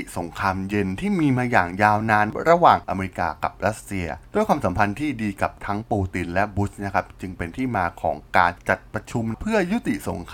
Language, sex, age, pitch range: Thai, male, 20-39, 95-125 Hz